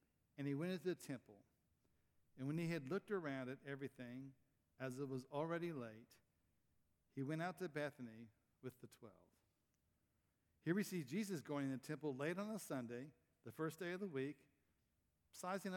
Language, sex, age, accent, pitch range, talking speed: English, male, 60-79, American, 125-160 Hz, 175 wpm